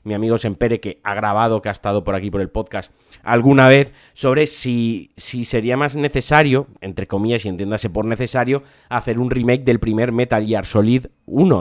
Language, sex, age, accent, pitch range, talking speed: Spanish, male, 30-49, Spanish, 110-130 Hz, 195 wpm